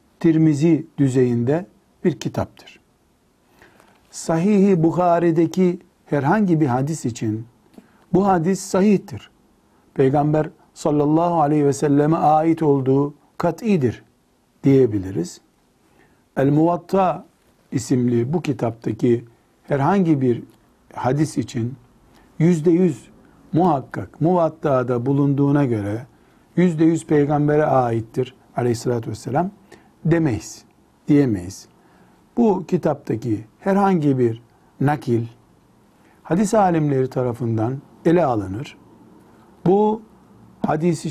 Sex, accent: male, native